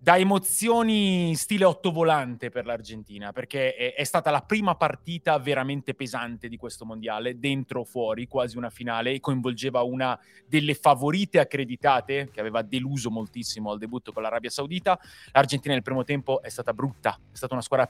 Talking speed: 170 wpm